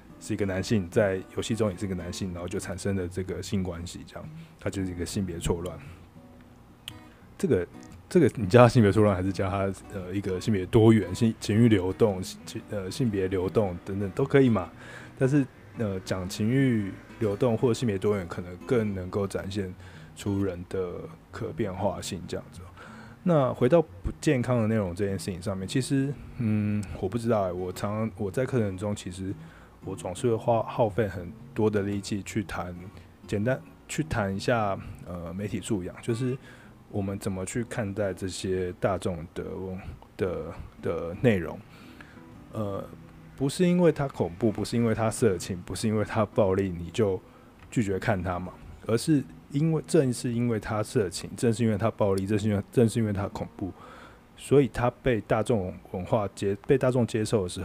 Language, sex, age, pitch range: Chinese, male, 20-39, 95-115 Hz